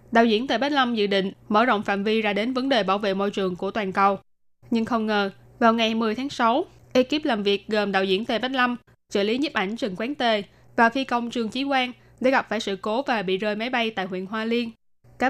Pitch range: 200-245 Hz